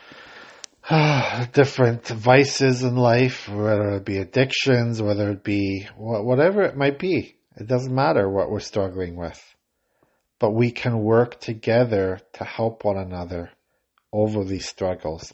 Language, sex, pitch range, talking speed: English, male, 105-125 Hz, 135 wpm